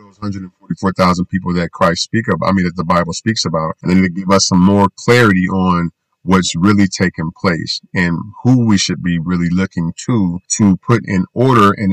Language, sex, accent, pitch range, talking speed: English, male, American, 90-110 Hz, 200 wpm